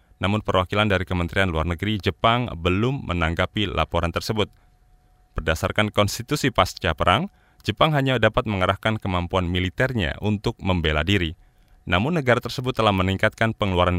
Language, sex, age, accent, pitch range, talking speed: Indonesian, male, 20-39, native, 90-120 Hz, 130 wpm